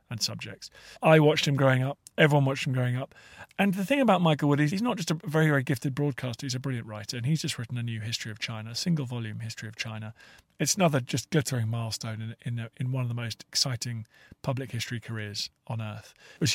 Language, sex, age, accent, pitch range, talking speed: English, male, 40-59, British, 125-170 Hz, 245 wpm